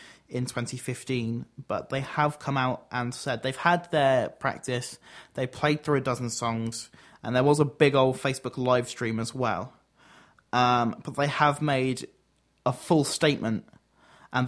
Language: English